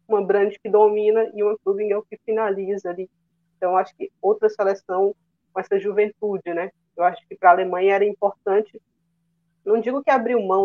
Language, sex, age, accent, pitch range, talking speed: Portuguese, female, 20-39, Brazilian, 175-210 Hz, 185 wpm